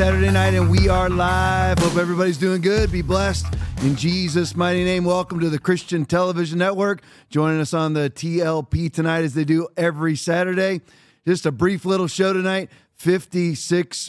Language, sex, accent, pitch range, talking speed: English, male, American, 160-200 Hz, 170 wpm